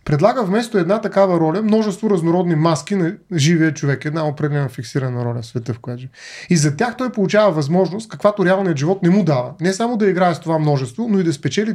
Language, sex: Bulgarian, male